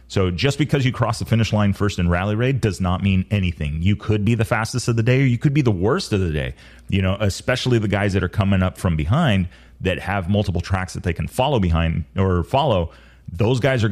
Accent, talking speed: American, 250 wpm